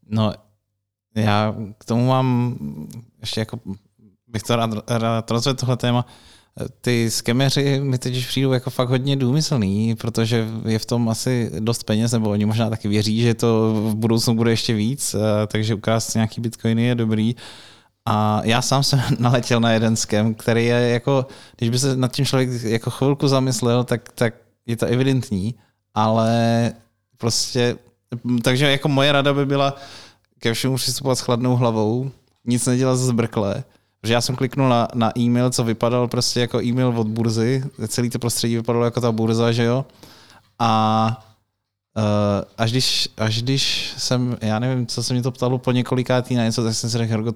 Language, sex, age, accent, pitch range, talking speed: Czech, male, 20-39, native, 110-125 Hz, 170 wpm